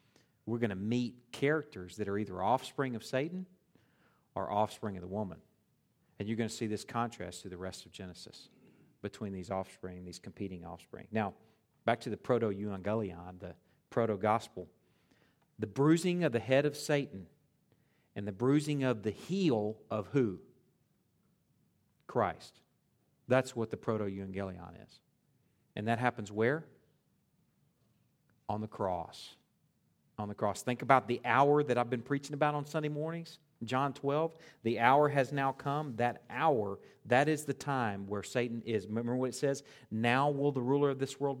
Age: 50-69